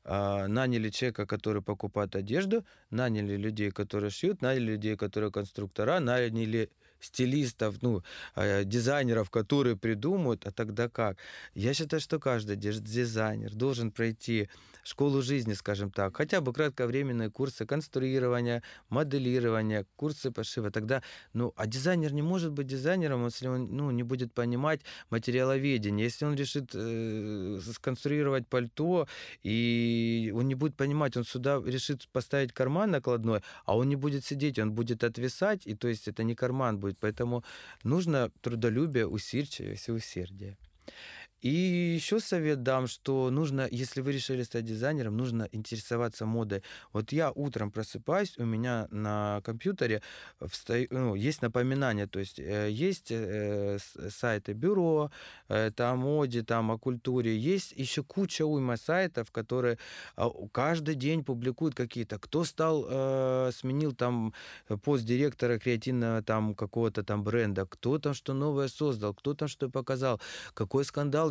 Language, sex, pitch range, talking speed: Russian, male, 110-140 Hz, 140 wpm